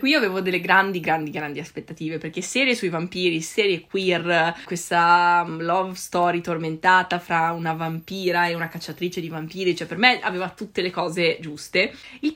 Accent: native